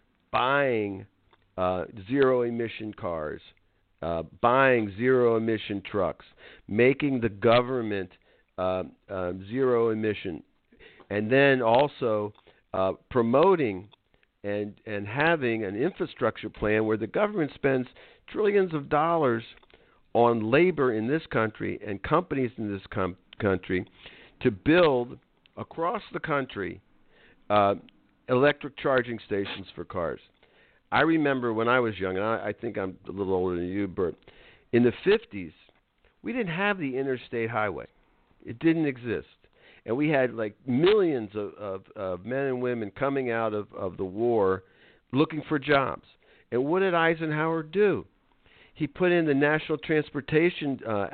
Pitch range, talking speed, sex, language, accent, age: 100-145 Hz, 135 wpm, male, English, American, 50-69